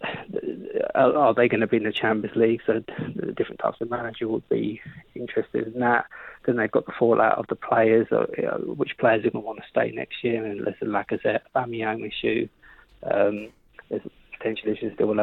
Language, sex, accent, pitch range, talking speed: English, male, British, 110-125 Hz, 195 wpm